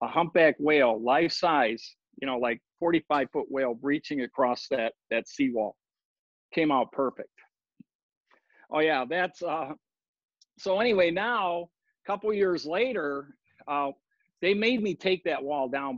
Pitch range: 135-180 Hz